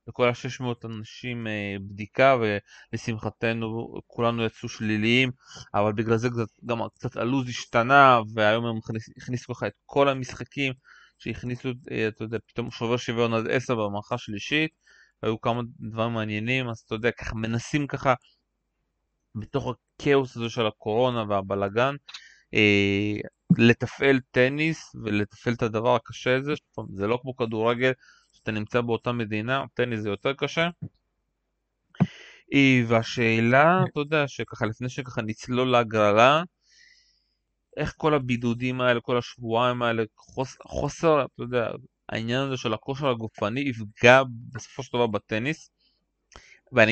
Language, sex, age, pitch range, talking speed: Hebrew, male, 20-39, 110-130 Hz, 125 wpm